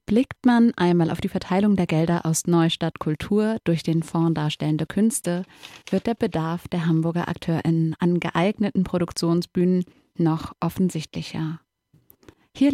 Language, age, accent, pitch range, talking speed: German, 20-39, German, 170-205 Hz, 130 wpm